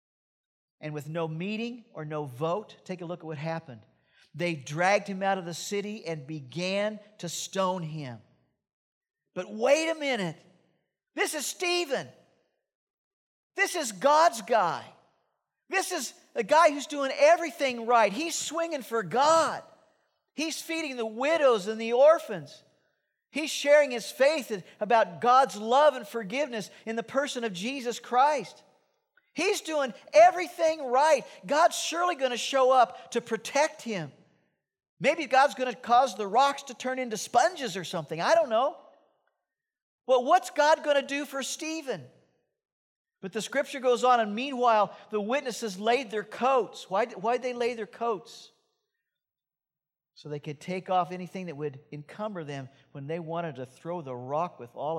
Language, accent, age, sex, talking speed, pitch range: English, American, 50-69, male, 155 wpm, 180-290 Hz